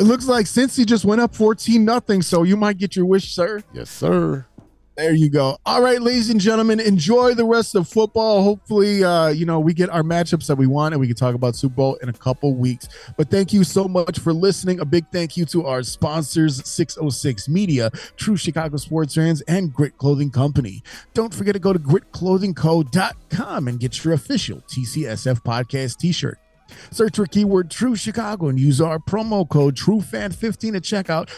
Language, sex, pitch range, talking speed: English, male, 140-195 Hz, 200 wpm